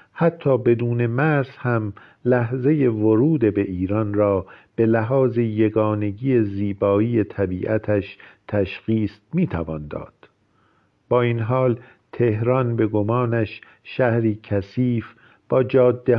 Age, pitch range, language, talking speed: 50-69, 105-130 Hz, Persian, 100 wpm